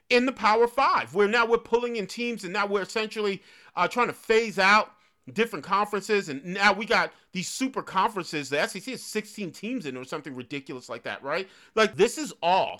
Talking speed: 205 wpm